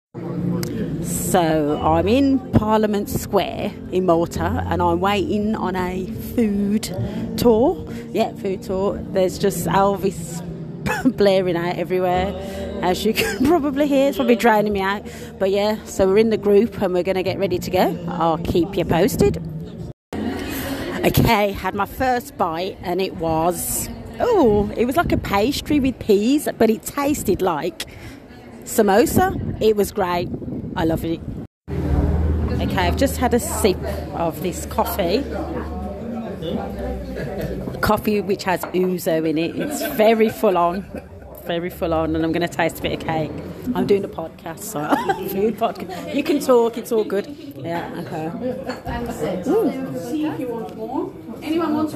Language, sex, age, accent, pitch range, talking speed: English, female, 30-49, British, 175-225 Hz, 145 wpm